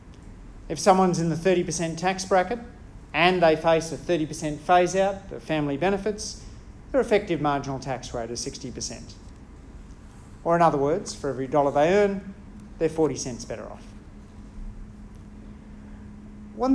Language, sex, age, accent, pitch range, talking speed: English, male, 40-59, Australian, 125-180 Hz, 135 wpm